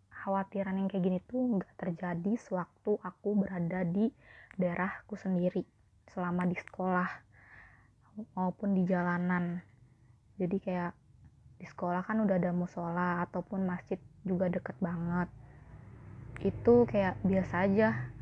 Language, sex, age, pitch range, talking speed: Indonesian, female, 20-39, 135-195 Hz, 120 wpm